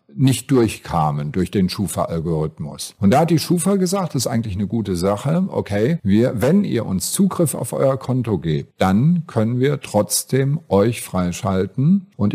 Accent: German